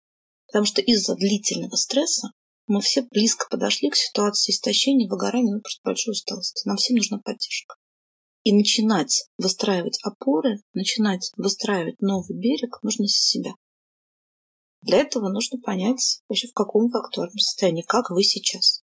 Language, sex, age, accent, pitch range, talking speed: Russian, female, 20-39, native, 195-245 Hz, 140 wpm